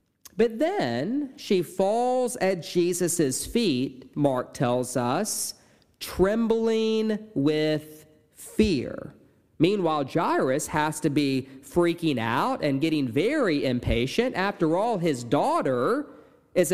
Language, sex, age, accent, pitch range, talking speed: English, male, 40-59, American, 140-205 Hz, 105 wpm